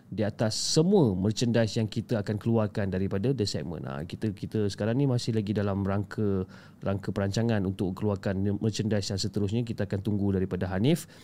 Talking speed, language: 170 wpm, Malay